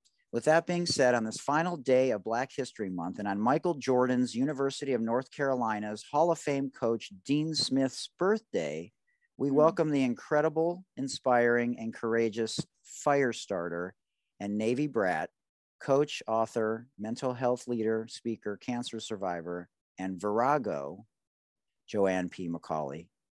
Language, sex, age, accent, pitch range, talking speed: English, male, 40-59, American, 110-145 Hz, 130 wpm